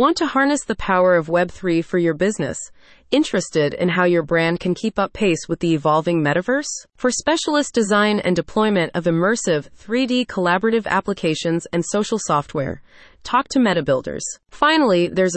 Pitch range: 170-230 Hz